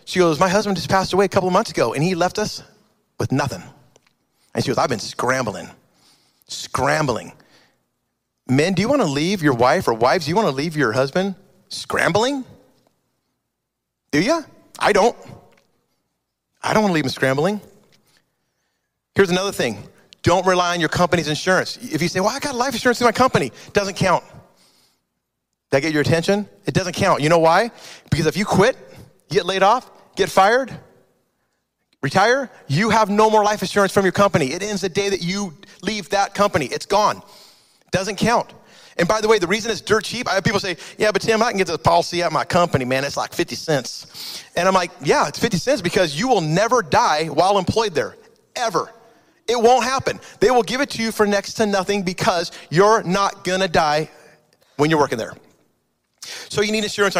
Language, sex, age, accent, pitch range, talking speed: English, male, 30-49, American, 165-215 Hz, 200 wpm